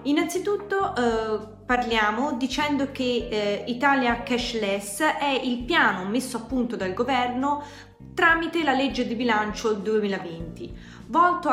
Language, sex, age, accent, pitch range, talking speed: Italian, female, 20-39, native, 205-300 Hz, 120 wpm